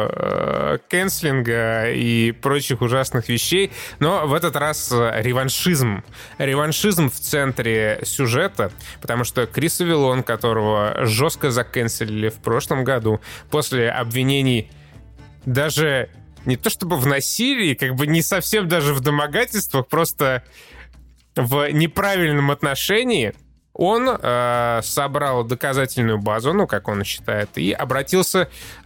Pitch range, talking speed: 115-150 Hz, 110 wpm